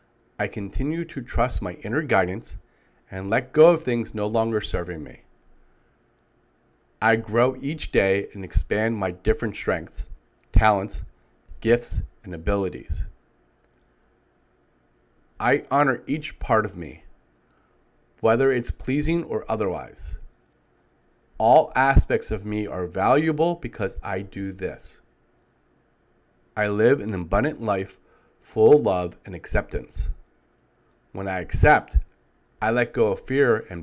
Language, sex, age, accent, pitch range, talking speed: English, male, 30-49, American, 95-130 Hz, 120 wpm